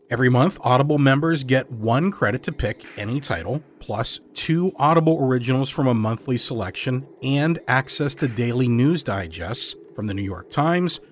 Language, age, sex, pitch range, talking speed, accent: English, 40-59, male, 115-155 Hz, 160 wpm, American